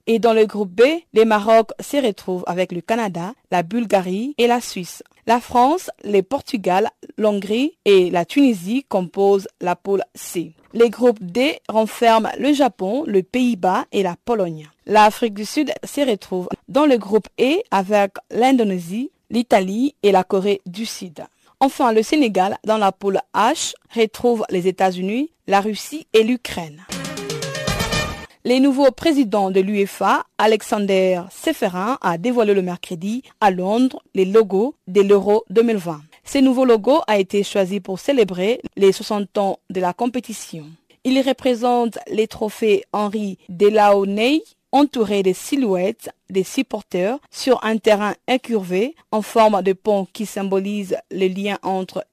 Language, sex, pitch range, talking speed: French, female, 190-245 Hz, 145 wpm